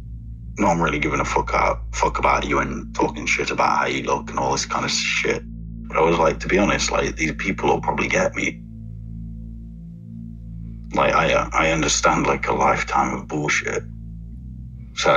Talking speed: 185 wpm